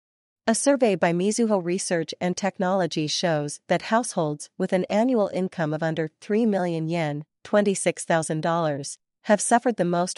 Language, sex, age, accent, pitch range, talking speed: English, female, 40-59, American, 160-200 Hz, 140 wpm